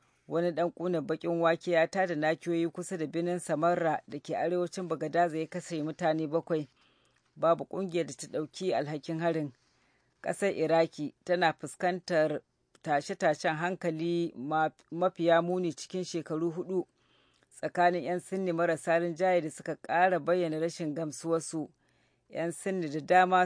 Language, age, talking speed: English, 40-59, 140 wpm